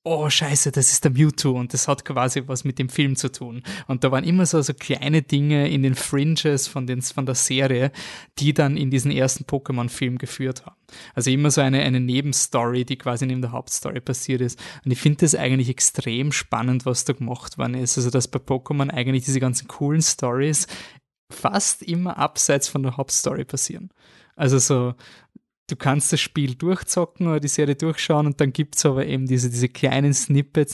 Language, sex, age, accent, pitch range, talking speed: German, male, 20-39, German, 130-145 Hz, 200 wpm